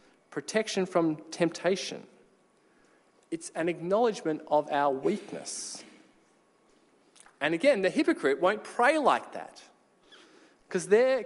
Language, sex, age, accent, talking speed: English, male, 20-39, Australian, 100 wpm